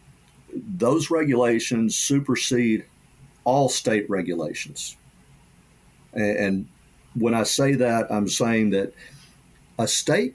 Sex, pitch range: male, 100-125 Hz